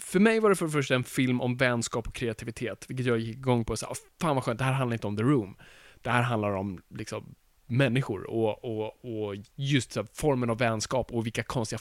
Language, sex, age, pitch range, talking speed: Swedish, male, 20-39, 120-175 Hz, 235 wpm